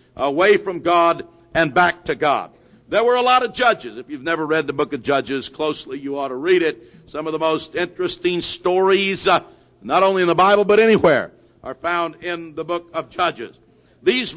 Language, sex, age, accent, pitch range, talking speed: English, male, 60-79, American, 155-195 Hz, 205 wpm